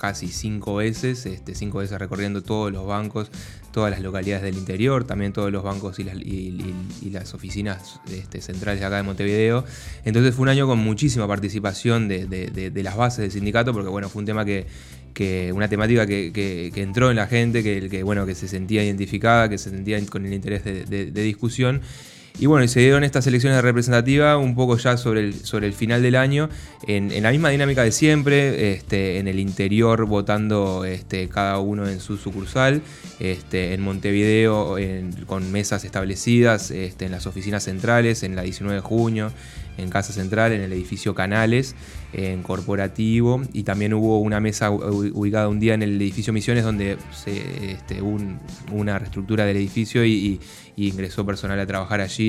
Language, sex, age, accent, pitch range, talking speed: Spanish, male, 20-39, Argentinian, 95-110 Hz, 195 wpm